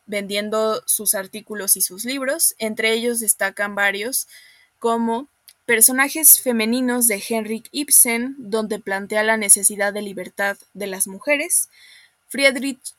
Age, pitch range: 20-39, 205-230 Hz